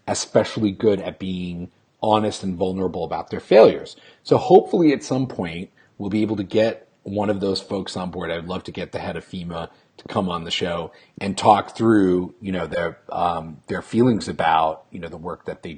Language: English